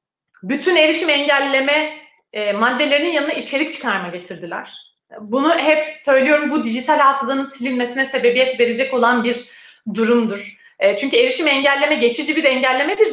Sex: female